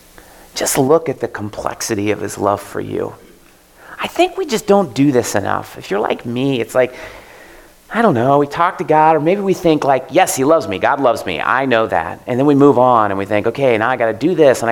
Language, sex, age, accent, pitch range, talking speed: English, male, 40-59, American, 110-160 Hz, 255 wpm